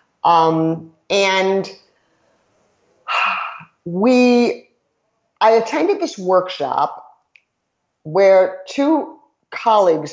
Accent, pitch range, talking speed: American, 145-185 Hz, 60 wpm